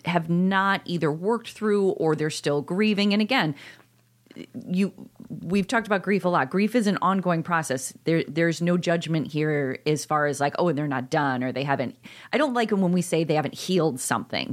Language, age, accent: English, 30-49, American